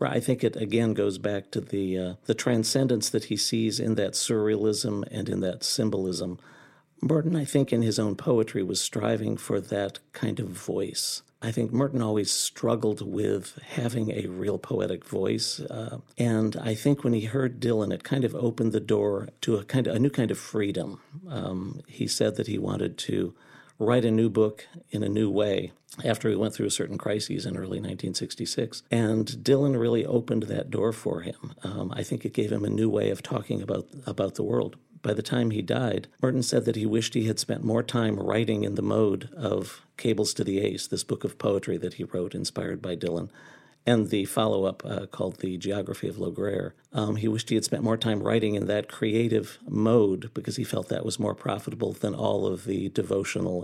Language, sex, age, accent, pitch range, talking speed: English, male, 50-69, American, 105-120 Hz, 205 wpm